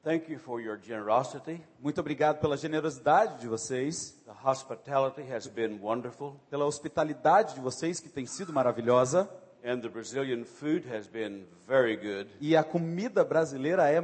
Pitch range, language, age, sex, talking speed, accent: 130-175 Hz, Portuguese, 40-59, male, 160 wpm, Brazilian